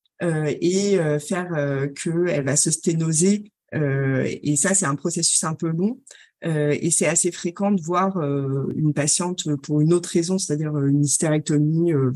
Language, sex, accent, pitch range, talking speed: French, female, French, 150-185 Hz, 180 wpm